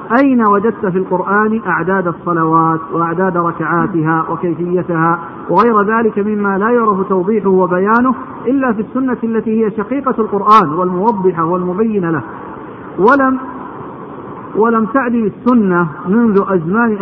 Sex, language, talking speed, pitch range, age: male, Arabic, 120 wpm, 185-225 Hz, 50-69